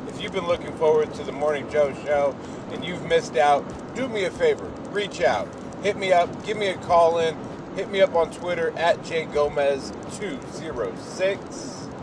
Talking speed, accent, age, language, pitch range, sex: 180 wpm, American, 40-59, English, 145-200 Hz, male